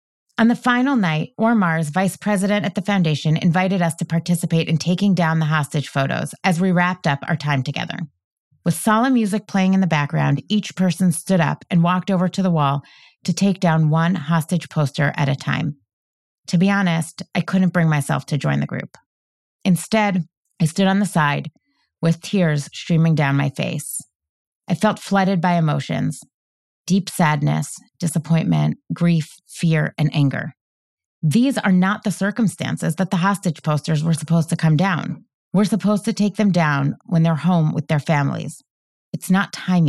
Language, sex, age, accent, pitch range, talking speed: English, female, 30-49, American, 155-190 Hz, 175 wpm